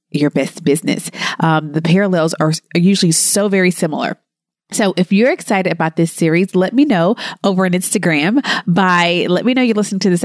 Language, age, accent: English, 30-49, American